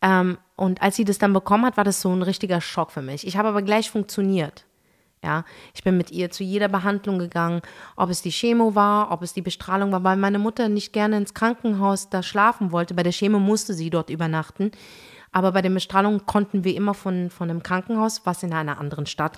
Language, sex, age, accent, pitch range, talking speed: German, female, 30-49, German, 175-210 Hz, 225 wpm